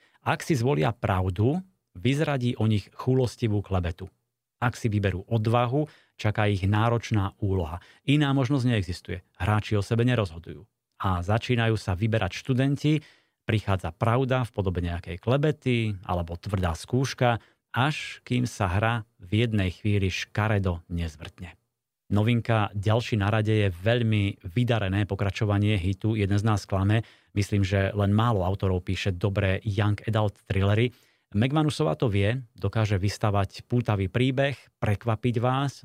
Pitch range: 100-120 Hz